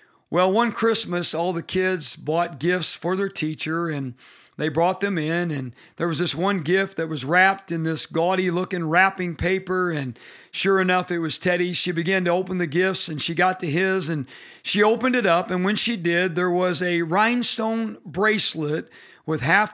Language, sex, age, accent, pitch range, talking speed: English, male, 50-69, American, 170-205 Hz, 190 wpm